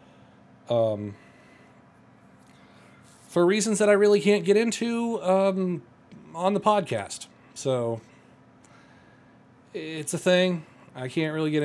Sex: male